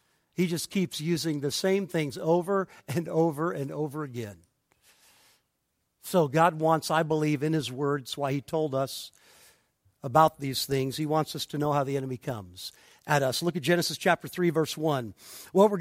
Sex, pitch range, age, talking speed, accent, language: male, 150-185 Hz, 50-69, 180 wpm, American, English